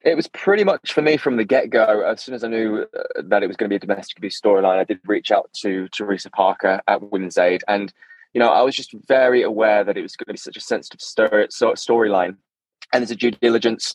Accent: British